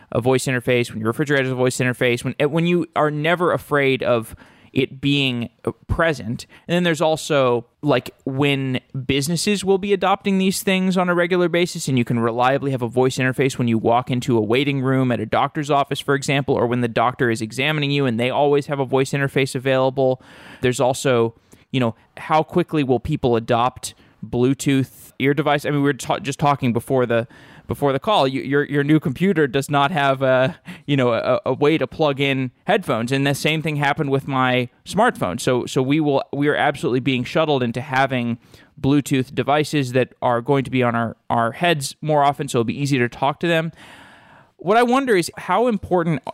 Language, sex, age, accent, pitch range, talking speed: English, male, 20-39, American, 125-150 Hz, 205 wpm